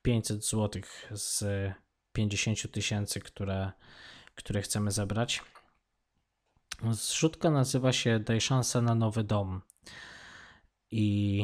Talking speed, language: 95 wpm, Polish